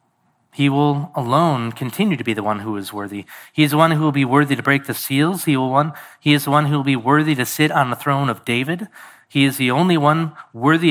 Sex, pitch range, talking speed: male, 120-155 Hz, 240 wpm